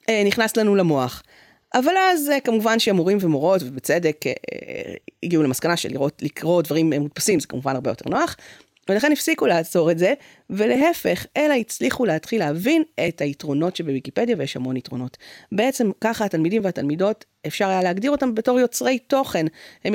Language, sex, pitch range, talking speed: English, female, 165-230 Hz, 145 wpm